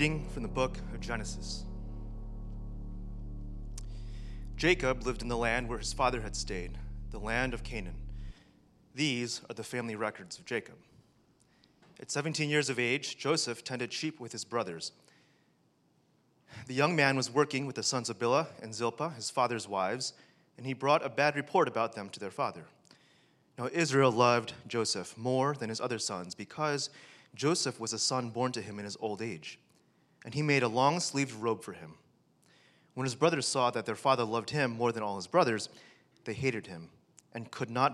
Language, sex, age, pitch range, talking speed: English, male, 30-49, 110-140 Hz, 180 wpm